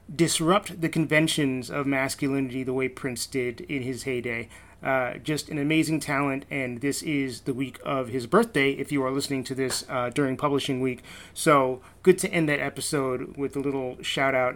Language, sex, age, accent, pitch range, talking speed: English, male, 30-49, American, 130-155 Hz, 190 wpm